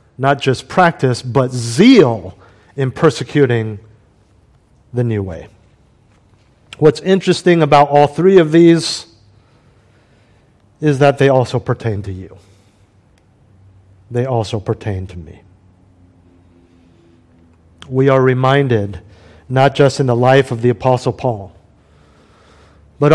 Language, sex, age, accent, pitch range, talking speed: English, male, 50-69, American, 110-145 Hz, 110 wpm